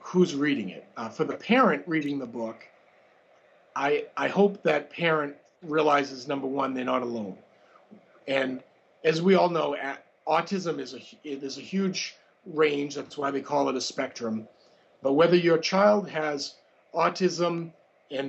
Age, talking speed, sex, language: 40-59, 160 wpm, male, English